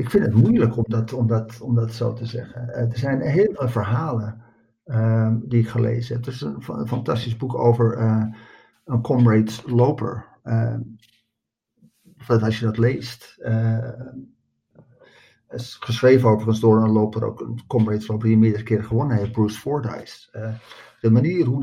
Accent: Dutch